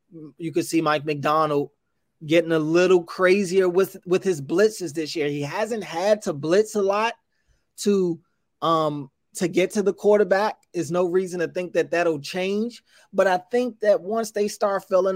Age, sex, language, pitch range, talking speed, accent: 20-39, male, English, 145-175 Hz, 180 wpm, American